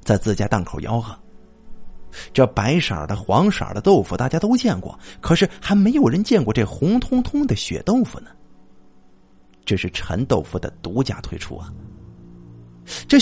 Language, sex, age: Chinese, male, 50-69